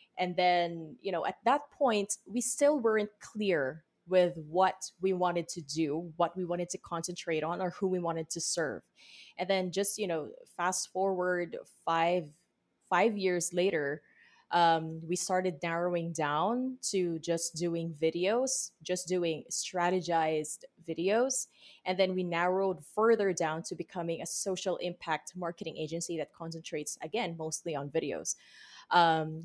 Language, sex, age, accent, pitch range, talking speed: English, female, 20-39, Filipino, 170-220 Hz, 150 wpm